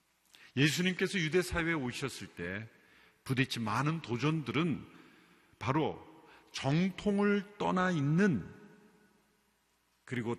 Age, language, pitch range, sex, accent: 50-69, Korean, 100-145 Hz, male, native